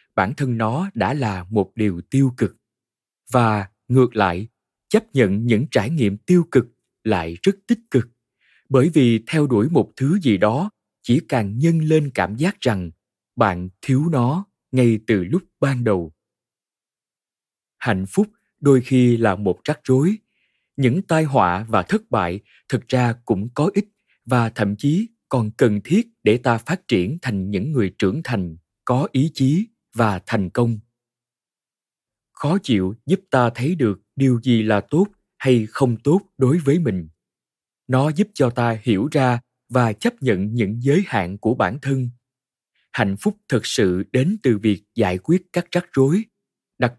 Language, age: Vietnamese, 20-39